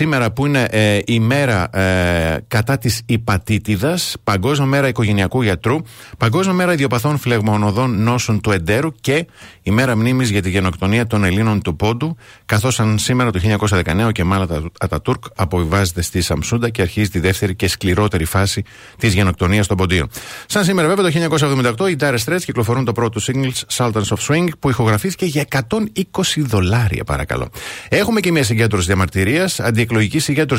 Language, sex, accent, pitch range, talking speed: Greek, male, native, 105-130 Hz, 165 wpm